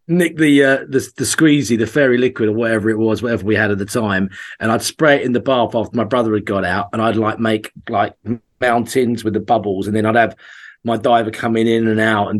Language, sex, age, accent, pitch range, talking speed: English, male, 40-59, British, 105-125 Hz, 250 wpm